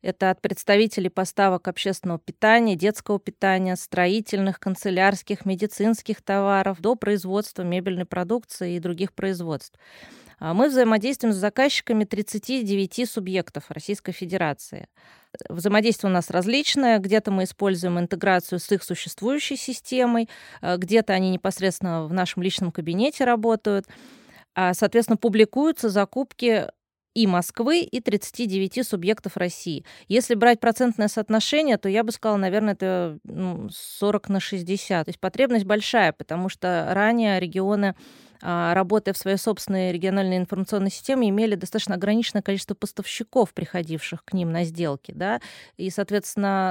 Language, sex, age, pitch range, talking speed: Russian, female, 20-39, 185-220 Hz, 125 wpm